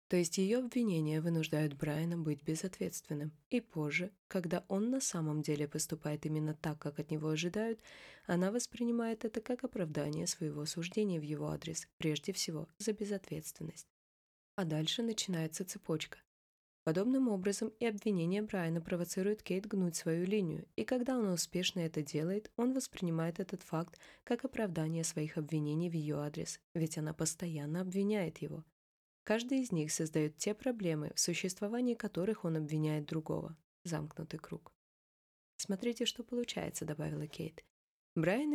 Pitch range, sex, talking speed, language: 160-210 Hz, female, 145 wpm, Russian